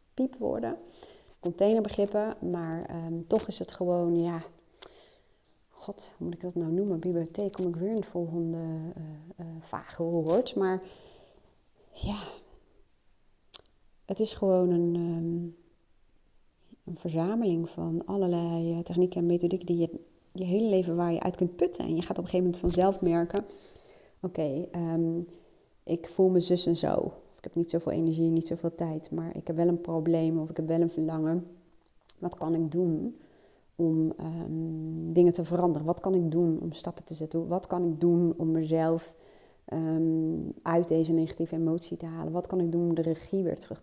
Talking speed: 175 wpm